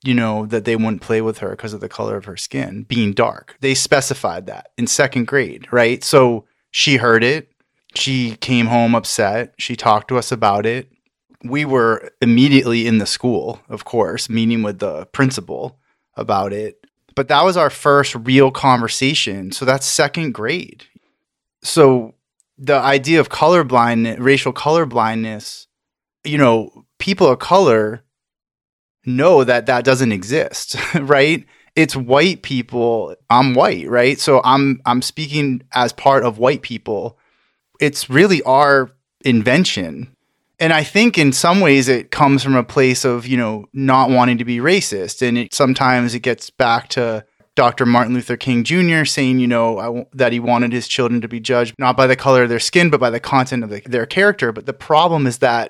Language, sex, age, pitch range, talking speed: English, male, 30-49, 115-140 Hz, 175 wpm